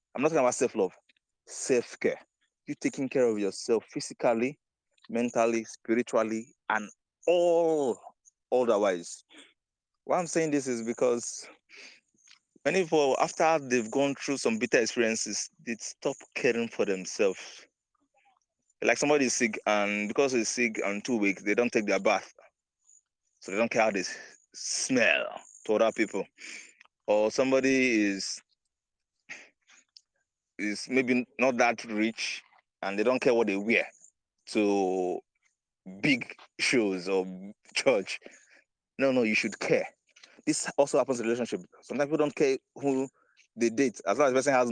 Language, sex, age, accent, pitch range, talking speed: English, male, 30-49, Nigerian, 110-140 Hz, 140 wpm